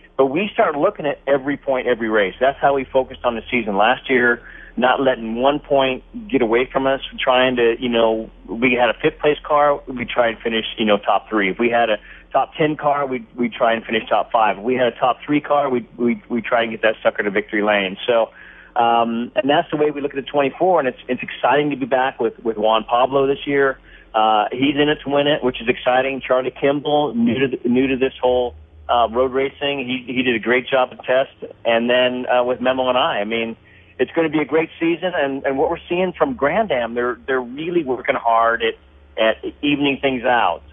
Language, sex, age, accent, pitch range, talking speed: English, male, 40-59, American, 115-140 Hz, 245 wpm